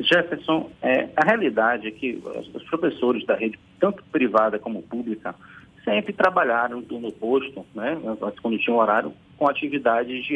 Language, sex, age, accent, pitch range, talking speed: Portuguese, male, 50-69, Brazilian, 130-205 Hz, 155 wpm